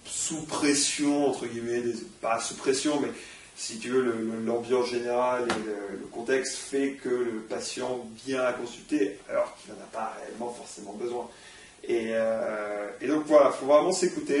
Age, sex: 30-49, male